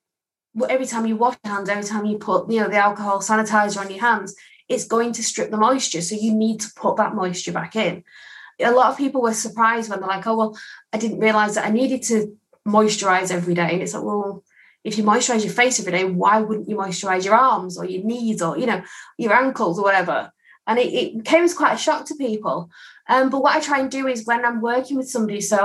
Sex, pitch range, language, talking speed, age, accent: female, 200-240 Hz, English, 245 wpm, 20-39, British